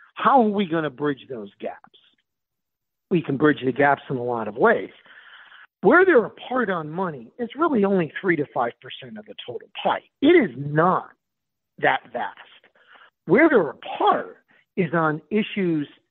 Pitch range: 160-225 Hz